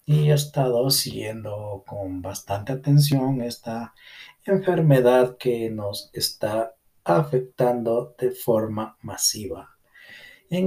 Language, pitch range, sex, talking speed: Spanish, 110-145 Hz, male, 95 wpm